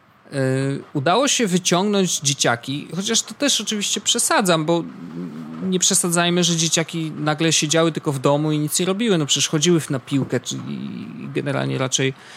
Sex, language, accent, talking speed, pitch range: male, Polish, native, 155 wpm, 130-190 Hz